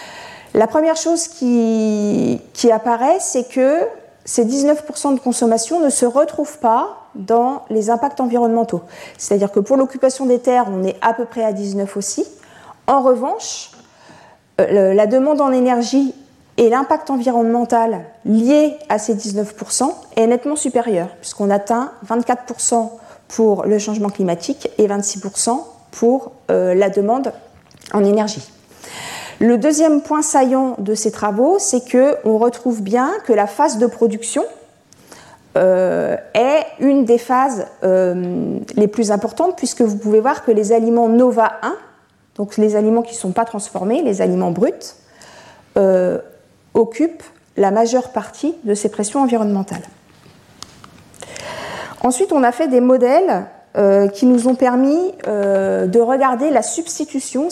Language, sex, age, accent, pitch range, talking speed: French, female, 40-59, French, 215-275 Hz, 140 wpm